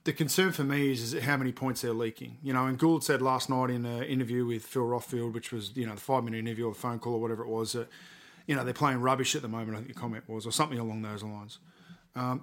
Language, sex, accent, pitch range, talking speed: English, male, Australian, 125-155 Hz, 290 wpm